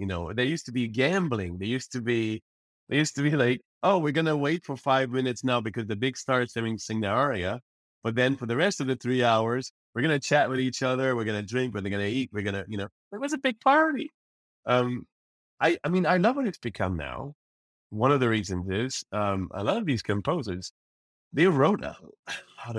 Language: English